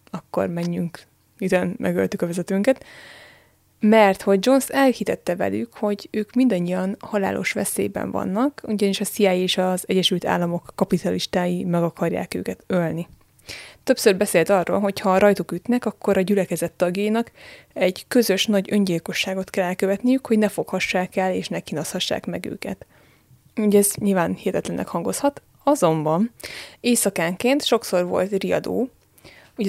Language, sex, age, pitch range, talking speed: Hungarian, female, 20-39, 180-210 Hz, 135 wpm